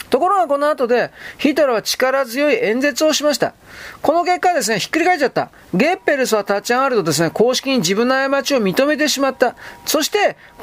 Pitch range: 225-305 Hz